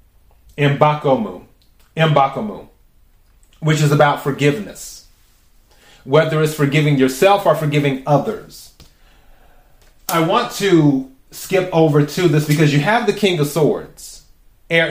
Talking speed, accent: 115 wpm, American